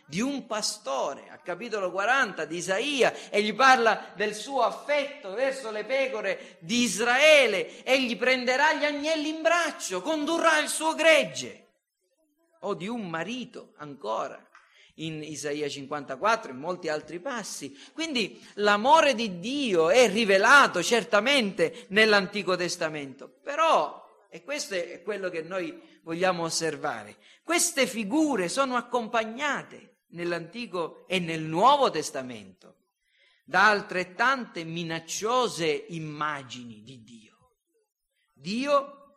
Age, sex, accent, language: 50-69, male, native, Italian